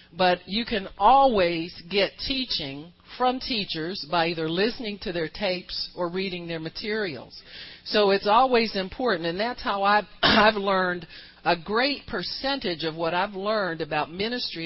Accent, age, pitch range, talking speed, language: American, 50-69, 175-235 Hz, 150 wpm, English